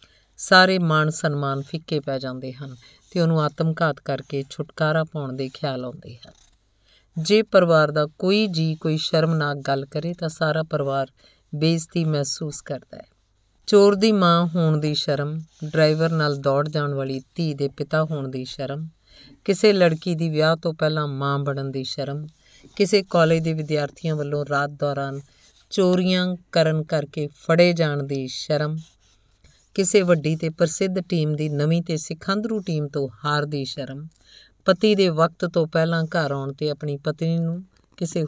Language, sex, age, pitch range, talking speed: Punjabi, female, 50-69, 140-170 Hz, 145 wpm